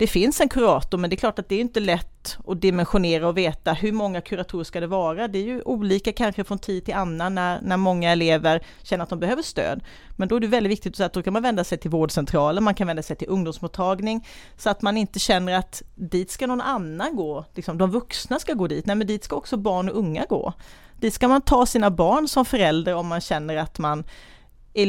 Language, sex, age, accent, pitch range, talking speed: Swedish, female, 40-59, native, 170-215 Hz, 240 wpm